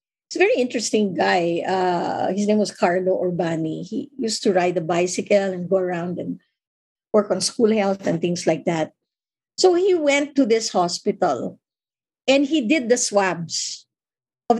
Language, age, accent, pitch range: English, 50-69, Filipino, 185-260 Hz